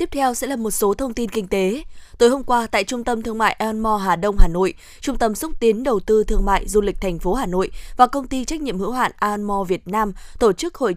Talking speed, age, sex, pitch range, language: 275 wpm, 20-39, female, 195-240 Hz, Vietnamese